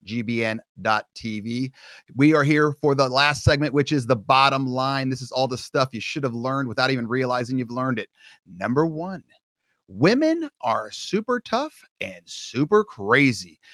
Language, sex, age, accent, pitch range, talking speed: English, male, 30-49, American, 125-155 Hz, 160 wpm